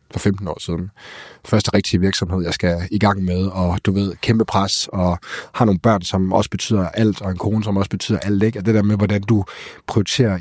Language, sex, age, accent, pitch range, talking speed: Danish, male, 30-49, native, 90-110 Hz, 230 wpm